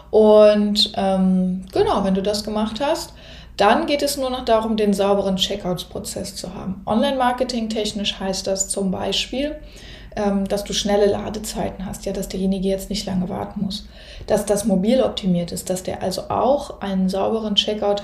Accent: German